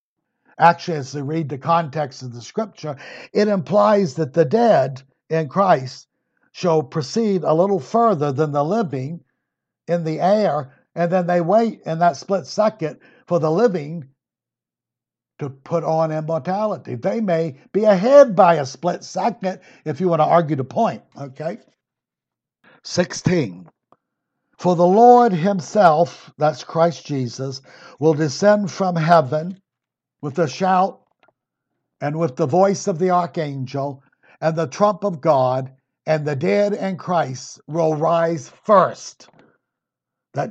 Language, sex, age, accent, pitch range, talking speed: English, male, 60-79, American, 145-185 Hz, 140 wpm